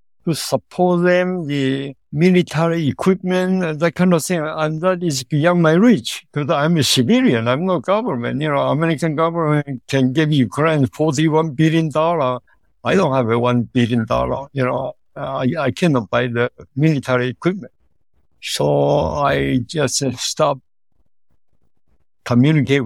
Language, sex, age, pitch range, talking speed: English, male, 60-79, 125-155 Hz, 140 wpm